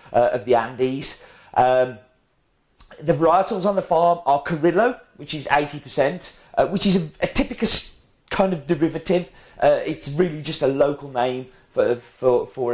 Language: English